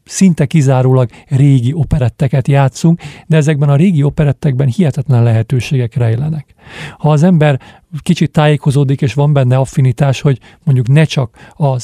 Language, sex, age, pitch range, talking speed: Hungarian, male, 50-69, 125-155 Hz, 135 wpm